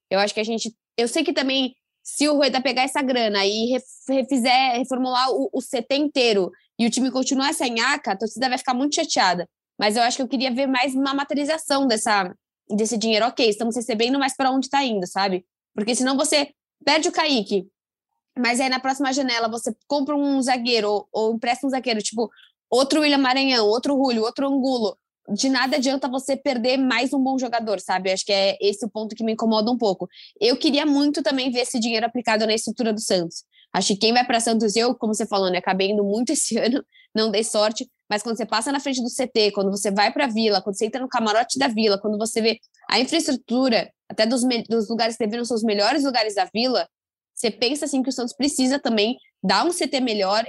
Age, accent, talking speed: 20-39, Brazilian, 220 wpm